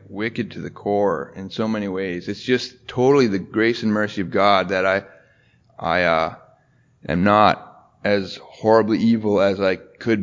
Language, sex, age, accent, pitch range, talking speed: English, male, 30-49, American, 110-140 Hz, 170 wpm